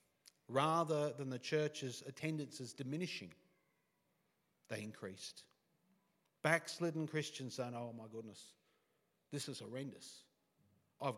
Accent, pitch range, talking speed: Australian, 120-160 Hz, 95 wpm